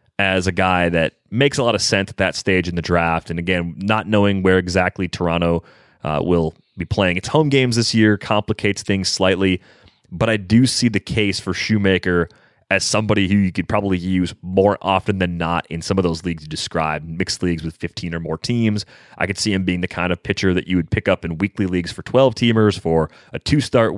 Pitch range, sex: 85-110 Hz, male